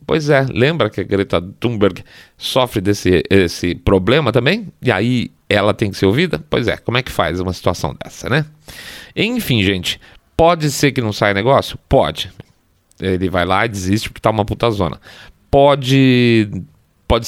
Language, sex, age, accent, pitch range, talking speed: Portuguese, male, 40-59, Brazilian, 95-135 Hz, 170 wpm